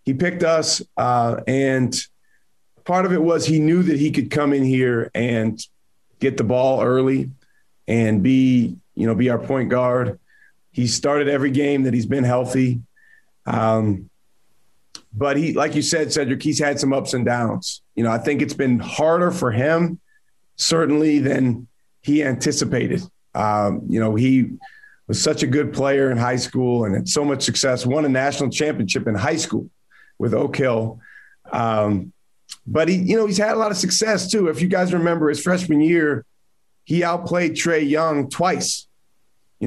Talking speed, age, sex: 175 wpm, 40-59, male